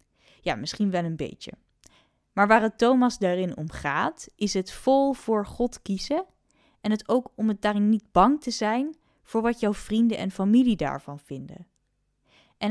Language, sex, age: Dutch, female, 10-29